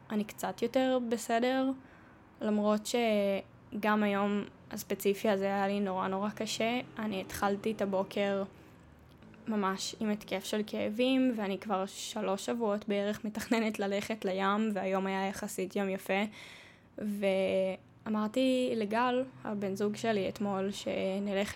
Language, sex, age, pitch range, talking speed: Hebrew, female, 10-29, 195-215 Hz, 120 wpm